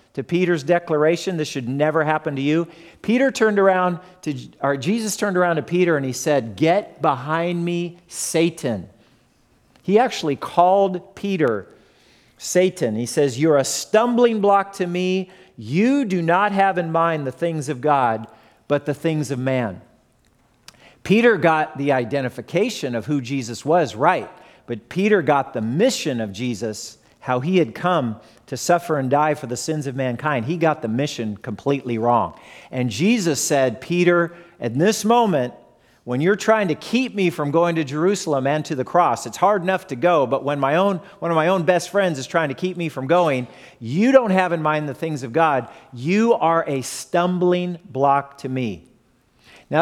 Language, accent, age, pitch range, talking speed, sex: English, American, 50-69, 135-180 Hz, 180 wpm, male